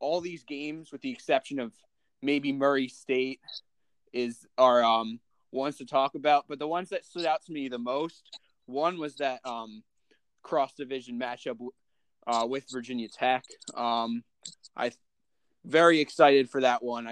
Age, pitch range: 20-39, 120-145 Hz